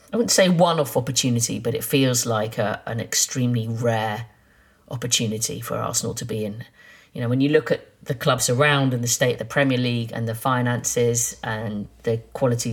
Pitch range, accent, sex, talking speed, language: 115-140 Hz, British, female, 190 wpm, English